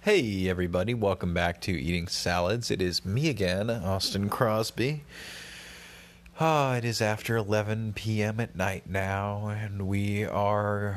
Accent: American